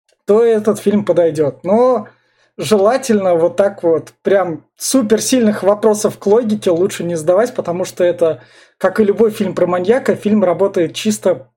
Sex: male